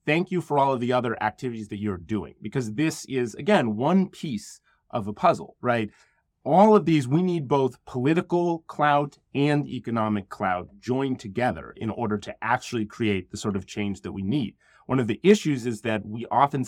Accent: American